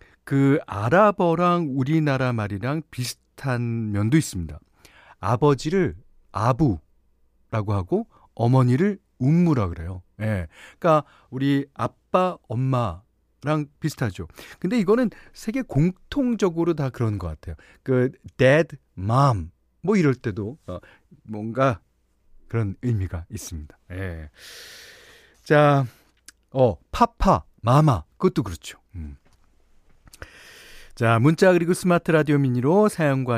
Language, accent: Korean, native